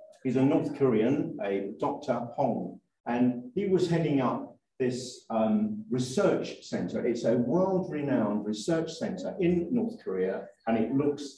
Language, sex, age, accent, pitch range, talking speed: English, male, 50-69, British, 115-155 Hz, 150 wpm